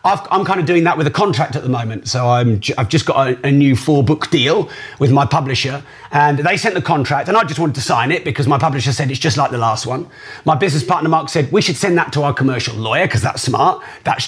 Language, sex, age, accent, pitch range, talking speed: English, male, 40-59, British, 140-205 Hz, 275 wpm